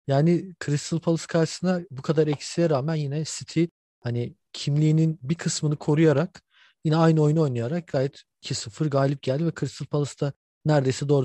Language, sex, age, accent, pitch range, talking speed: Turkish, male, 40-59, native, 125-155 Hz, 155 wpm